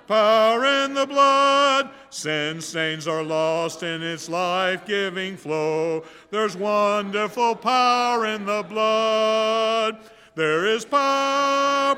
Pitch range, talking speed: 185-275 Hz, 105 wpm